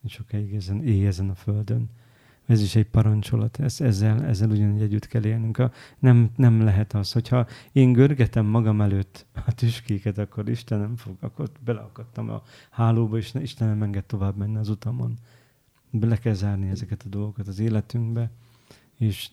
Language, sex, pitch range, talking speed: Hungarian, male, 105-120 Hz, 165 wpm